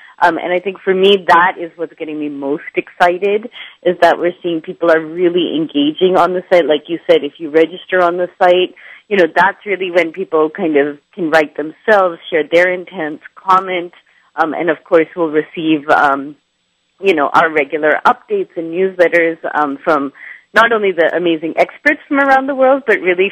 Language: English